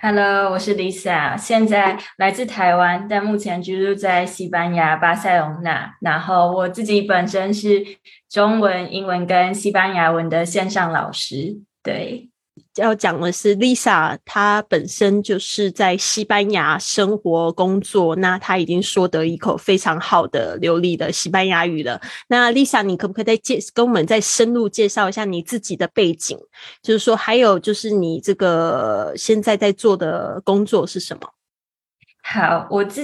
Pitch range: 175-205 Hz